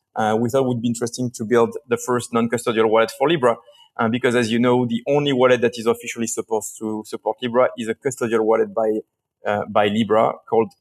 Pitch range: 115-135 Hz